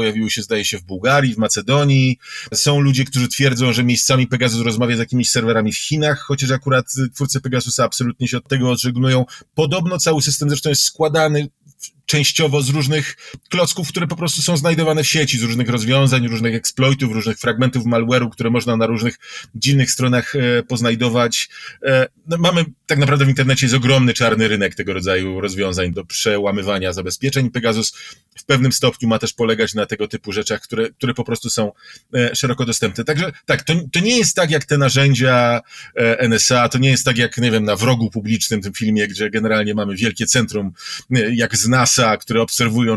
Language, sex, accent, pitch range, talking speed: Polish, male, native, 115-145 Hz, 180 wpm